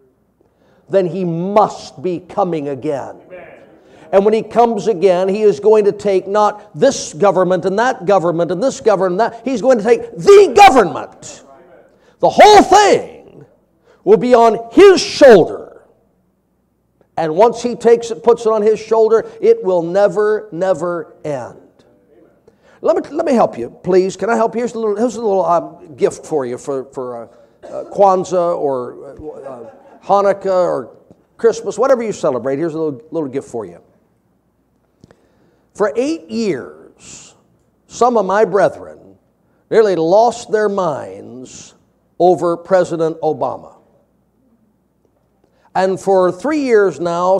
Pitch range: 175-235 Hz